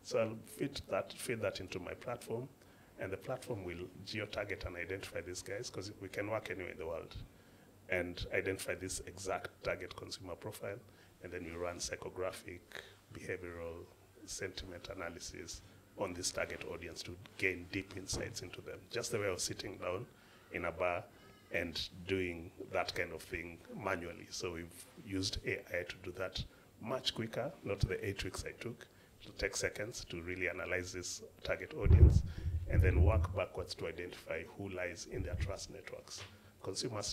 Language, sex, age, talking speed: English, male, 30-49, 165 wpm